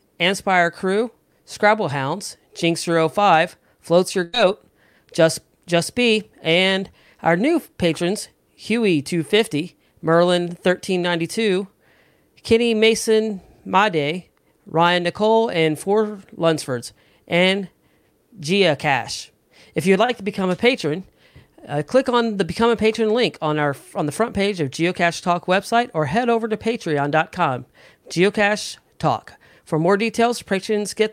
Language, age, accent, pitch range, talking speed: English, 40-59, American, 160-215 Hz, 125 wpm